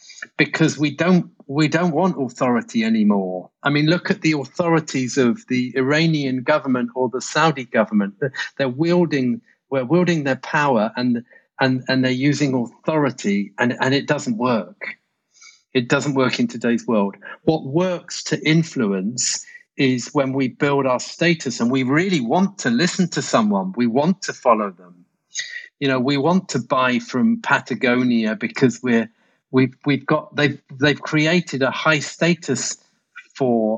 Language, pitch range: English, 125-170 Hz